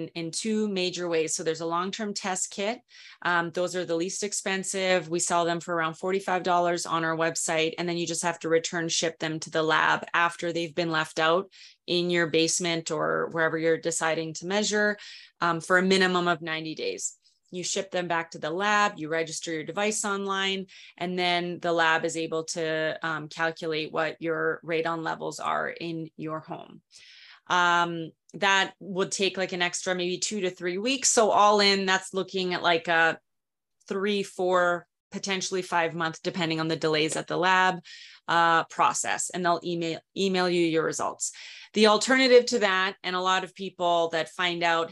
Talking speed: 190 wpm